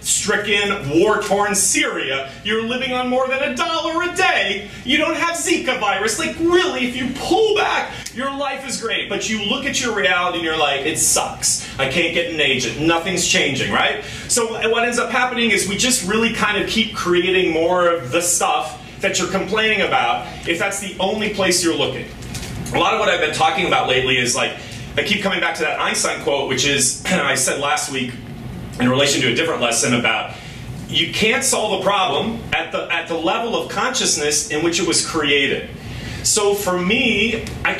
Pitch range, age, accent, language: 165-245 Hz, 30-49, American, English